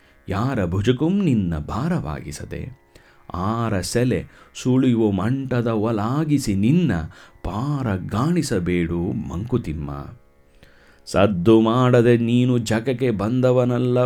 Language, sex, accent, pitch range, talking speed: Kannada, male, native, 85-120 Hz, 75 wpm